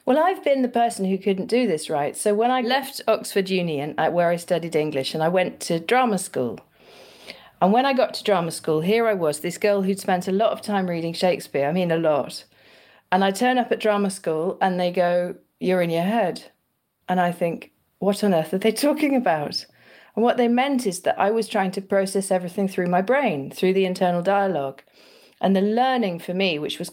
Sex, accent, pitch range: female, British, 180-215 Hz